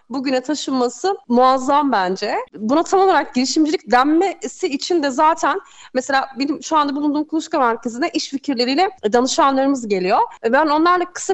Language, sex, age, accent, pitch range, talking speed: Turkish, female, 30-49, native, 225-310 Hz, 140 wpm